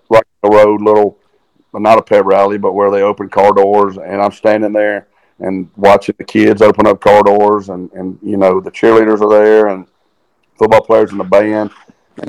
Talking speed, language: 205 wpm, English